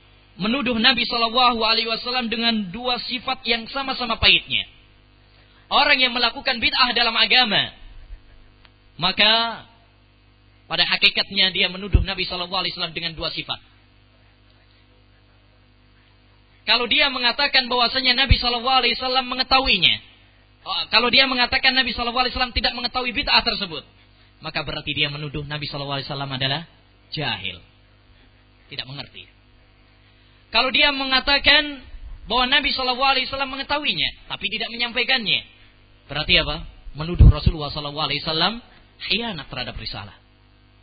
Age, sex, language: 20-39, male, Malay